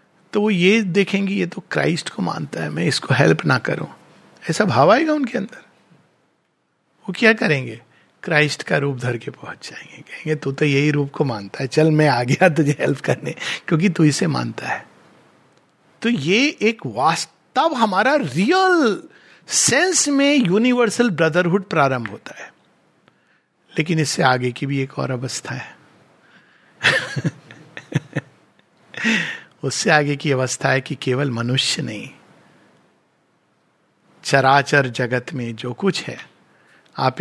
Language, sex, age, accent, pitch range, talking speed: Hindi, male, 60-79, native, 130-180 Hz, 120 wpm